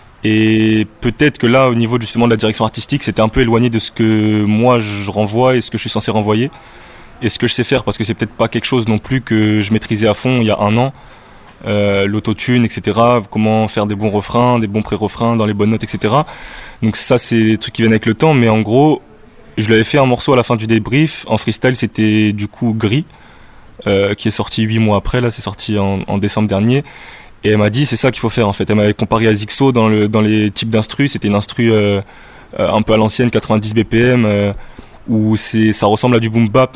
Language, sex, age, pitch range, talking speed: French, male, 20-39, 105-120 Hz, 250 wpm